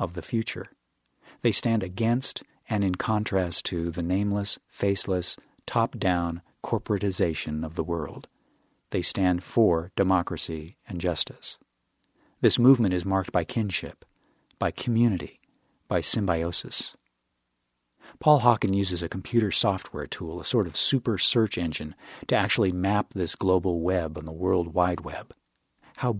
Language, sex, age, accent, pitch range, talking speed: English, male, 50-69, American, 90-115 Hz, 135 wpm